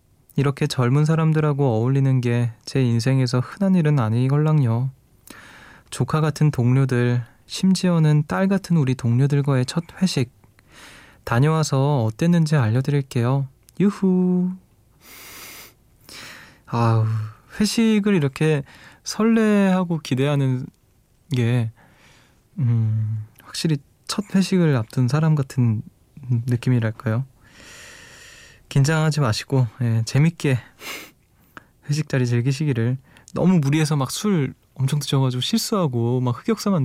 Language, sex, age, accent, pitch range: Korean, male, 20-39, native, 120-160 Hz